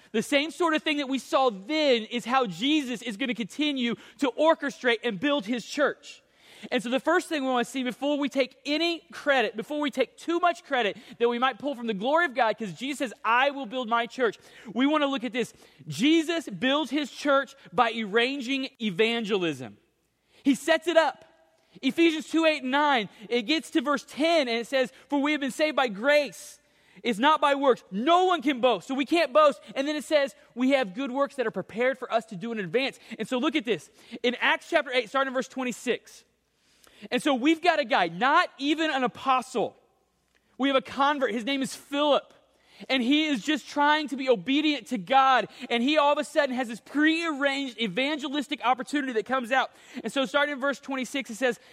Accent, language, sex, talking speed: American, English, male, 215 wpm